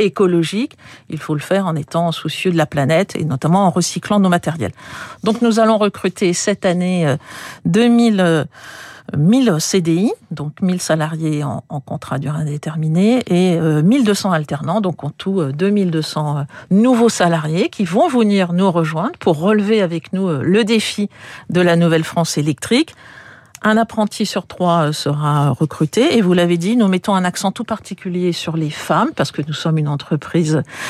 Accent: French